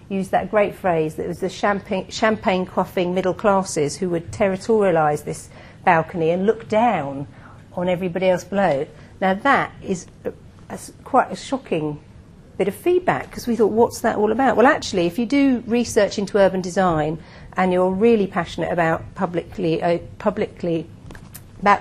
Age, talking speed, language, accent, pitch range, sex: 50-69, 165 wpm, English, British, 165-215 Hz, female